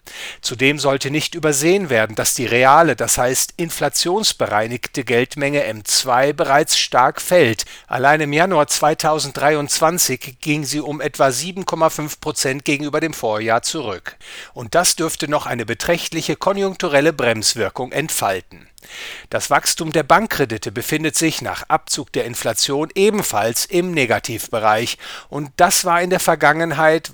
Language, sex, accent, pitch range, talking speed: English, male, German, 135-170 Hz, 130 wpm